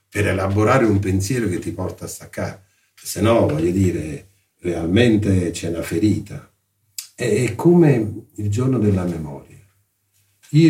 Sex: male